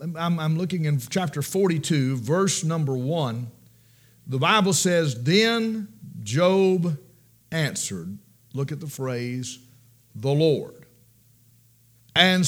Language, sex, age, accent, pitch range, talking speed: English, male, 50-69, American, 120-165 Hz, 100 wpm